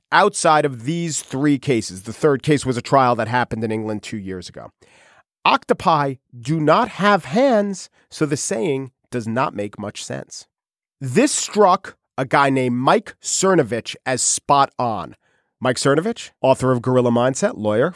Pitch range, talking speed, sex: 130-210 Hz, 160 wpm, male